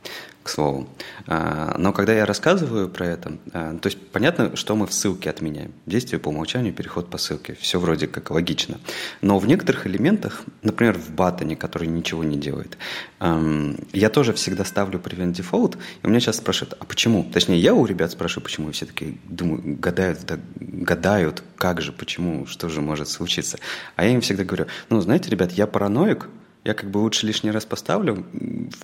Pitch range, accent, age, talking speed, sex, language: 80-105 Hz, native, 30-49, 185 wpm, male, Russian